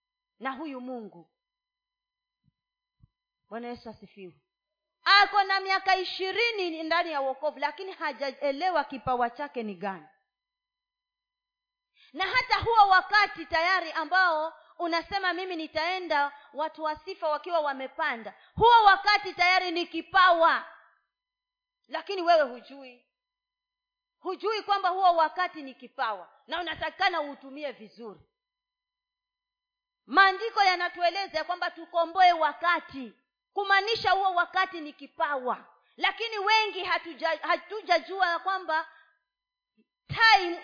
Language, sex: Swahili, female